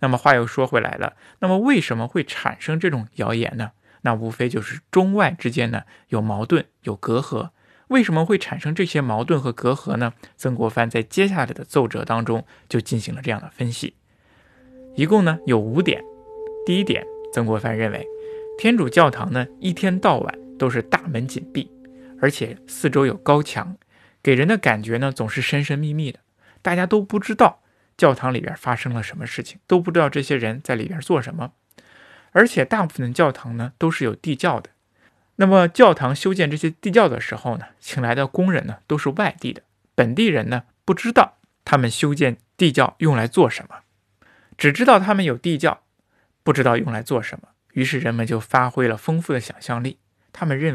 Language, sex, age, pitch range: Chinese, male, 20-39, 115-180 Hz